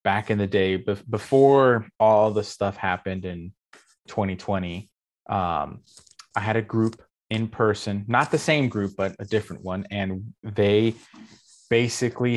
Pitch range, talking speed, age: 100-120 Hz, 135 wpm, 20-39